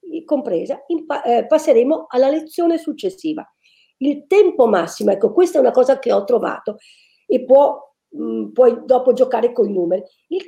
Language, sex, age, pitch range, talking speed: Italian, female, 50-69, 235-320 Hz, 150 wpm